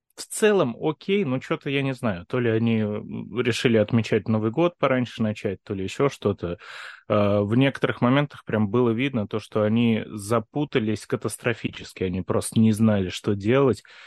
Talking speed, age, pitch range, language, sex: 160 wpm, 20-39, 105-125 Hz, Russian, male